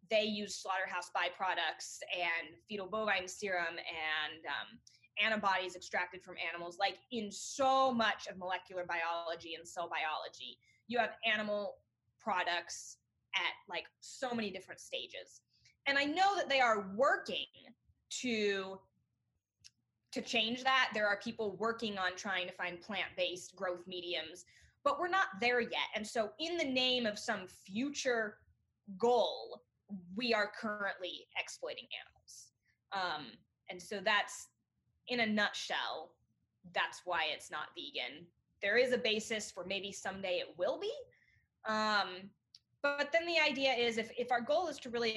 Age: 20-39